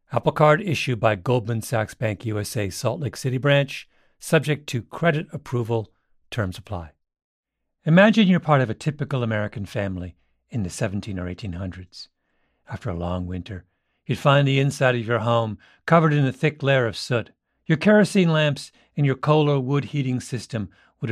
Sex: male